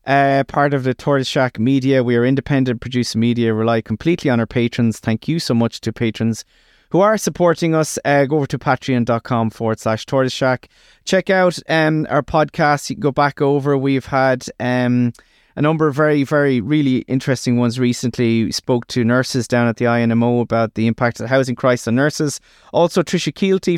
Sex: male